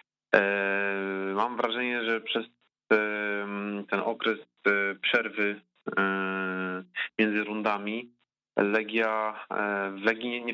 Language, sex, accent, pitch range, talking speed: Polish, male, native, 100-115 Hz, 75 wpm